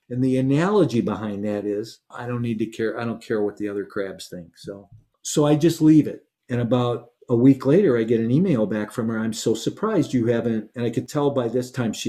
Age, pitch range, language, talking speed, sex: 50-69, 105-130 Hz, English, 250 wpm, male